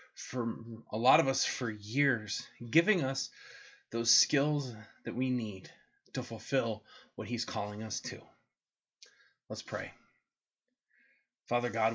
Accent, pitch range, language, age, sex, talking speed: American, 110-130 Hz, English, 20-39, male, 125 wpm